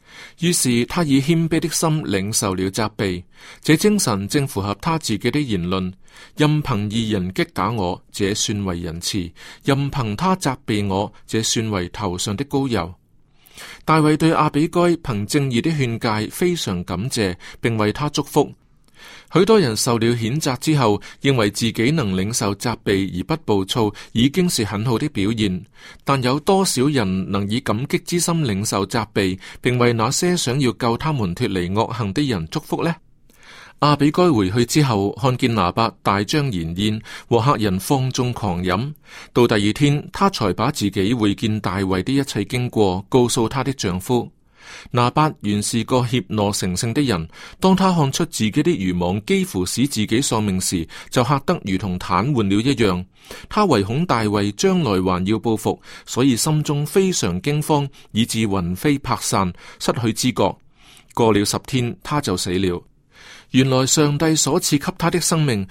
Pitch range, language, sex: 100-145 Hz, Chinese, male